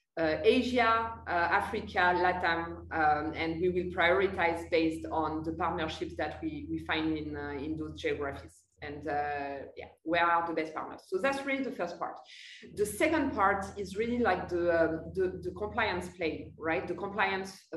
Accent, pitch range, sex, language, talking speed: French, 160-210 Hz, female, English, 175 wpm